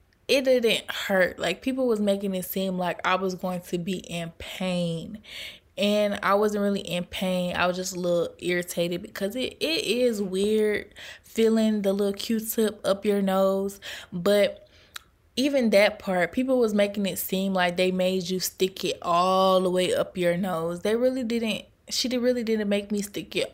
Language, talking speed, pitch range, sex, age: English, 185 wpm, 175-205 Hz, female, 20-39